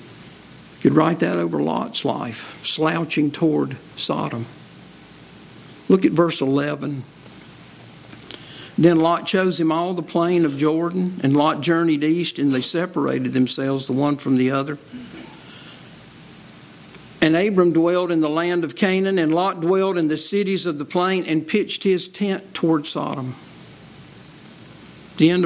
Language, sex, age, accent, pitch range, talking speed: English, male, 60-79, American, 155-190 Hz, 145 wpm